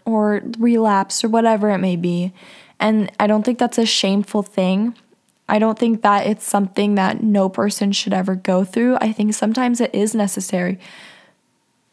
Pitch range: 190-220 Hz